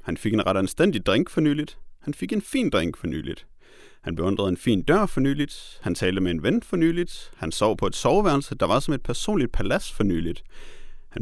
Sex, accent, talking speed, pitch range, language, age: male, native, 230 wpm, 100-170 Hz, Danish, 30-49